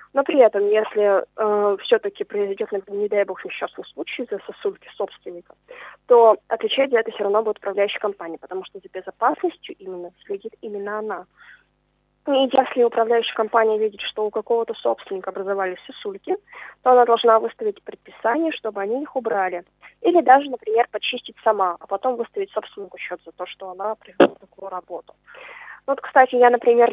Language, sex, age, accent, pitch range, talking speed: Russian, female, 20-39, native, 205-255 Hz, 165 wpm